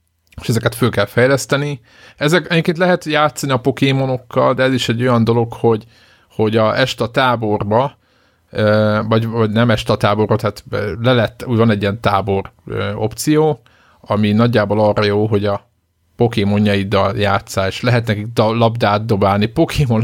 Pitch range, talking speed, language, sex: 105-120 Hz, 145 wpm, Hungarian, male